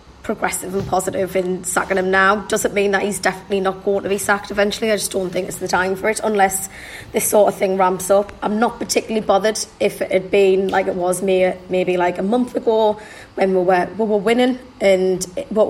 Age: 20-39